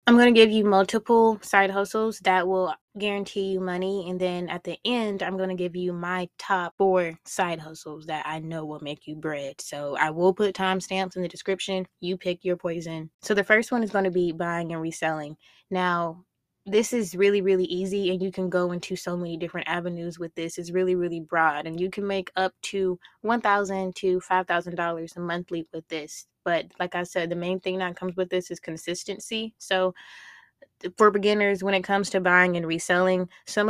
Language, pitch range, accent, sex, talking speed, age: English, 175-200 Hz, American, female, 205 wpm, 10-29